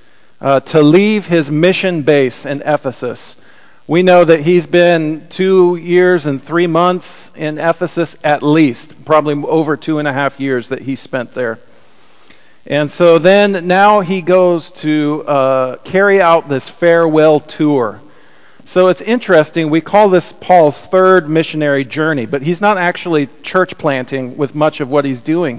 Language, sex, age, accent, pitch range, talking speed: English, male, 40-59, American, 135-170 Hz, 160 wpm